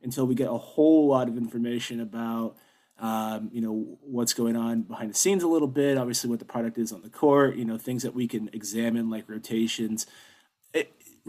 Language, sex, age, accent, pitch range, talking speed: English, male, 30-49, American, 115-135 Hz, 205 wpm